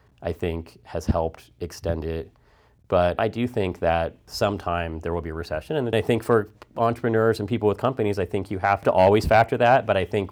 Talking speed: 215 wpm